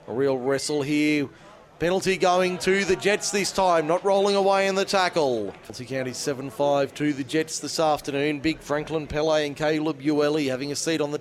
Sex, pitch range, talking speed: male, 150-200 Hz, 200 wpm